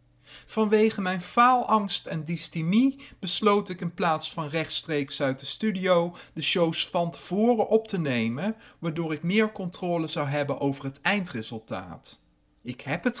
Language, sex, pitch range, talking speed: Dutch, male, 150-205 Hz, 150 wpm